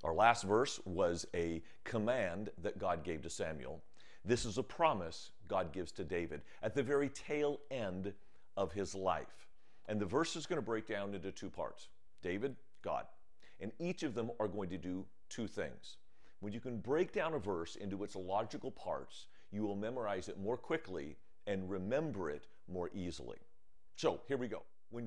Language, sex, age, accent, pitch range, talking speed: English, male, 50-69, American, 95-115 Hz, 185 wpm